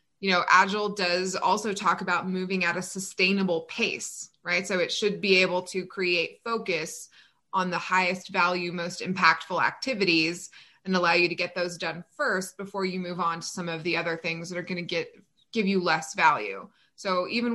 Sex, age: female, 20-39